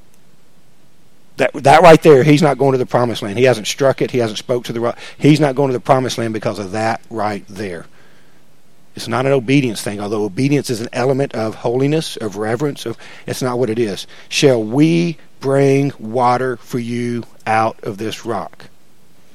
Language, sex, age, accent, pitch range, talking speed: English, male, 50-69, American, 115-150 Hz, 195 wpm